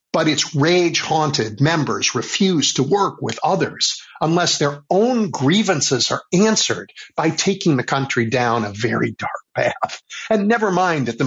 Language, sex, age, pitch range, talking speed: English, male, 50-69, 125-175 Hz, 155 wpm